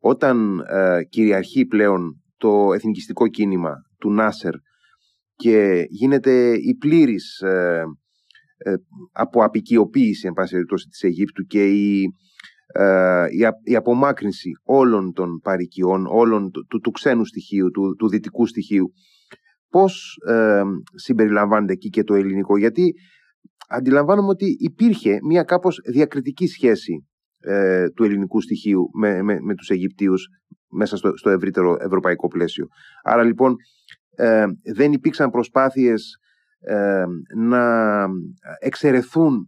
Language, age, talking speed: Greek, 30-49, 105 wpm